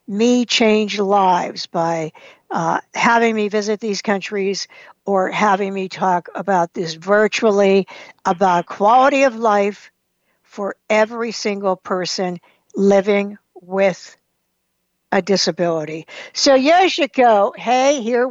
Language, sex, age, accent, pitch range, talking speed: English, female, 60-79, American, 195-245 Hz, 110 wpm